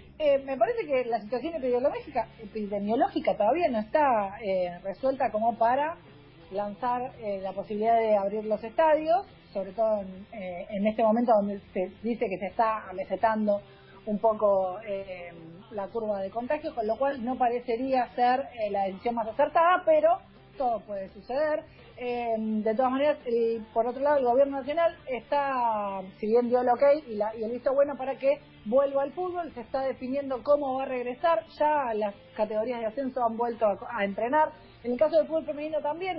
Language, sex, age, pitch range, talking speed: Spanish, female, 40-59, 215-275 Hz, 180 wpm